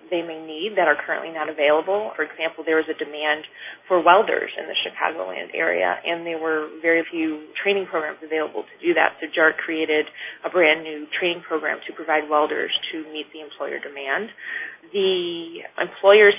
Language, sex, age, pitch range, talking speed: English, female, 20-39, 155-190 Hz, 175 wpm